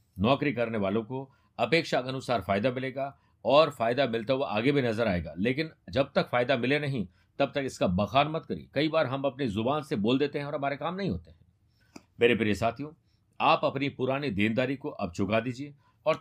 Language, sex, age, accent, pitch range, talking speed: Hindi, male, 50-69, native, 110-150 Hz, 205 wpm